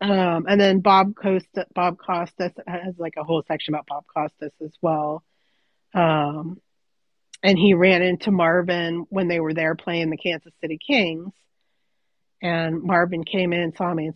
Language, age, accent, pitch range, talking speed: English, 30-49, American, 160-195 Hz, 170 wpm